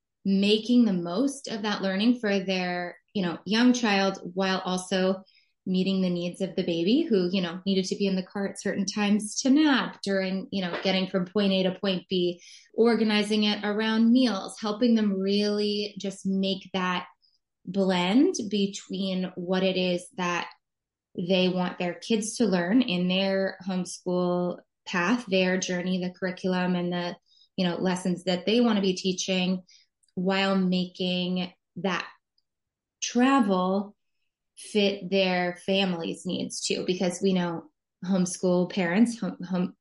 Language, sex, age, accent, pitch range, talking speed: English, female, 20-39, American, 180-205 Hz, 150 wpm